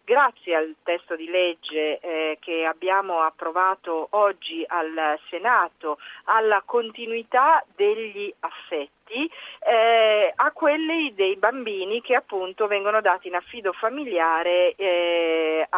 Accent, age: native, 40-59